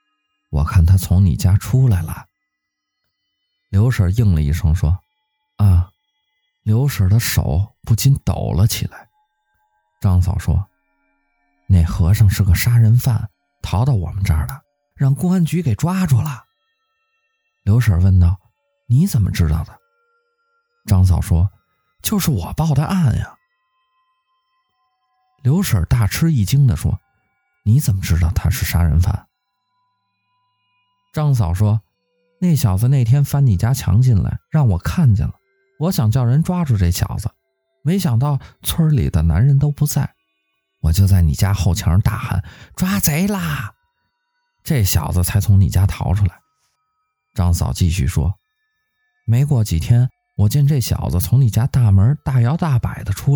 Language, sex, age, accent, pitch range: Chinese, male, 20-39, native, 95-150 Hz